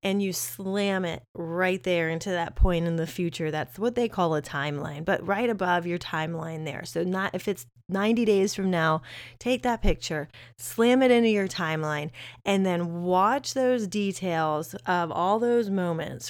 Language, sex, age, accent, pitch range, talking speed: English, female, 30-49, American, 160-210 Hz, 180 wpm